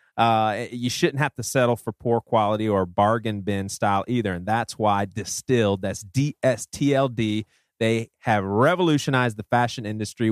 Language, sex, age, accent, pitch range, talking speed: English, male, 30-49, American, 110-145 Hz, 170 wpm